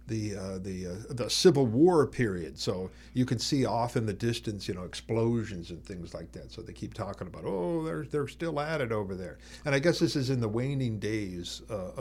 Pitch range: 115-160 Hz